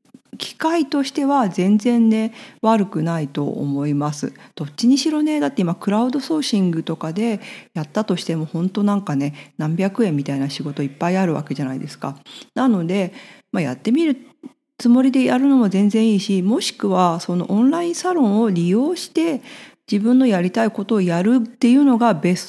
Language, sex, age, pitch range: Japanese, female, 40-59, 170-250 Hz